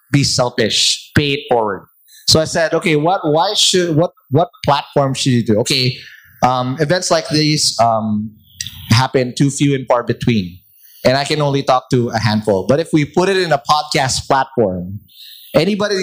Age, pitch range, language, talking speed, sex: 20-39, 125-165 Hz, English, 180 wpm, male